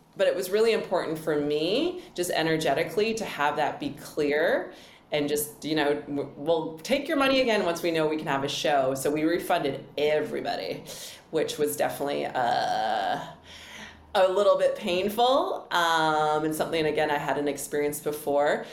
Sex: female